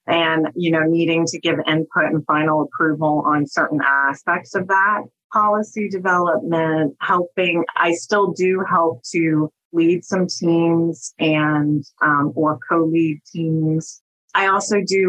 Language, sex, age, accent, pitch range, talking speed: English, female, 30-49, American, 155-170 Hz, 135 wpm